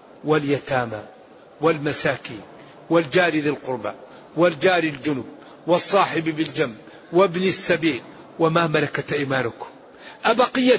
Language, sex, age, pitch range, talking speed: Arabic, male, 50-69, 180-230 Hz, 85 wpm